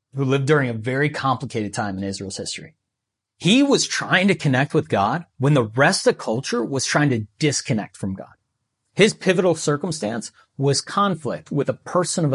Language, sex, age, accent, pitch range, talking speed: English, male, 30-49, American, 125-170 Hz, 185 wpm